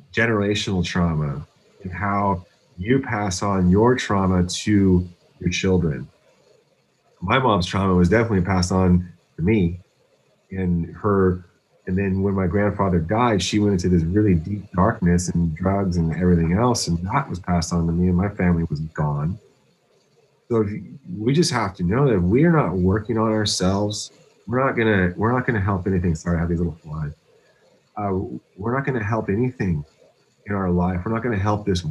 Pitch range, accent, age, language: 90-105 Hz, American, 30-49, English